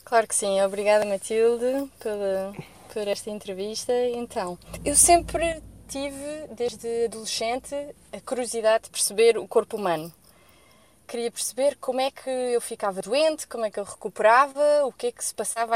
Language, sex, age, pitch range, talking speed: Portuguese, female, 20-39, 190-240 Hz, 155 wpm